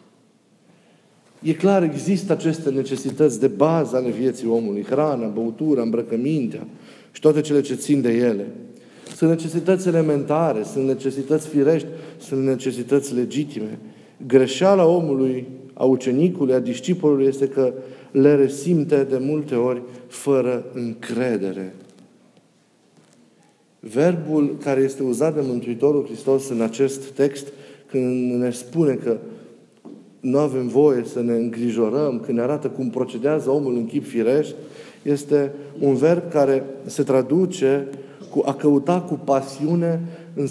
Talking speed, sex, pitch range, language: 125 wpm, male, 130-155 Hz, Romanian